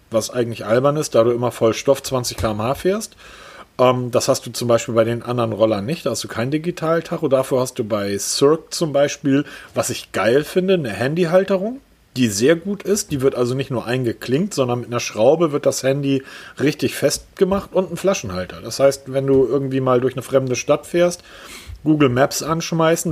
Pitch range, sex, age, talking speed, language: 120-155 Hz, male, 40-59, 200 wpm, German